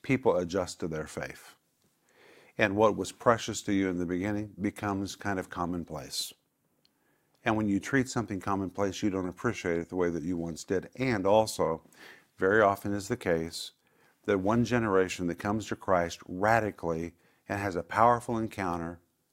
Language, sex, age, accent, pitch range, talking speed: English, male, 50-69, American, 90-110 Hz, 170 wpm